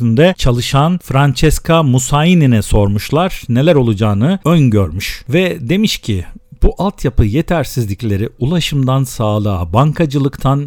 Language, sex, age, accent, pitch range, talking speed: Turkish, male, 50-69, native, 115-150 Hz, 90 wpm